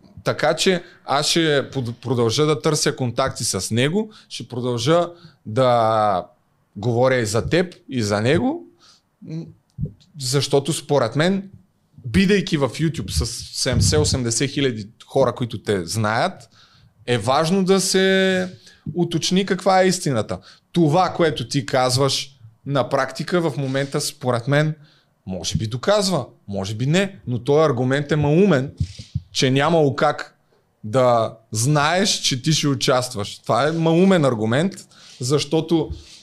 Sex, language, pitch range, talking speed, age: male, Bulgarian, 125-160 Hz, 130 wpm, 30-49